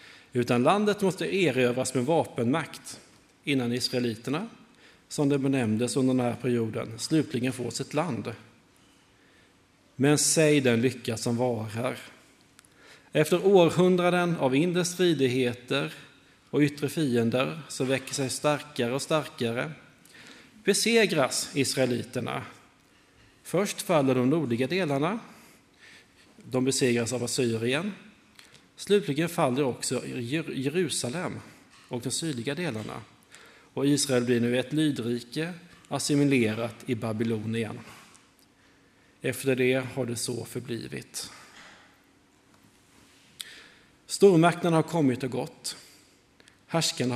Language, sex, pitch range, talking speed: Swedish, male, 125-160 Hz, 100 wpm